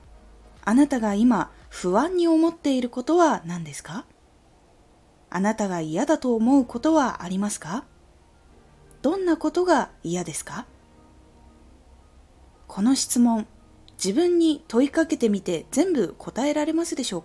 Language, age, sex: Japanese, 20-39, female